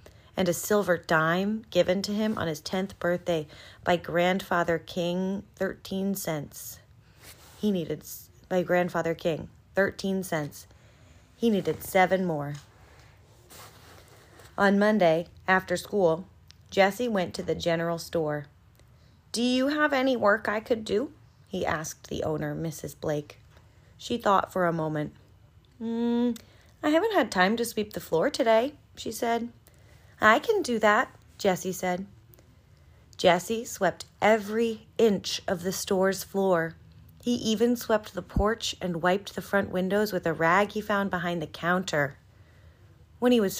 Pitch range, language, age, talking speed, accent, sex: 160-210 Hz, English, 30-49, 140 wpm, American, female